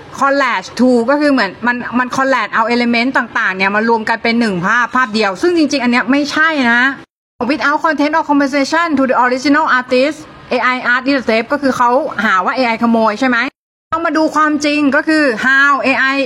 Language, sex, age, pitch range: Thai, female, 20-39, 235-285 Hz